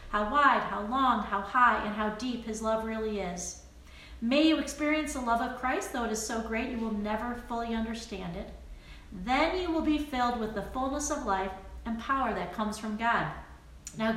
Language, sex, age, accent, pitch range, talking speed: English, female, 40-59, American, 220-280 Hz, 205 wpm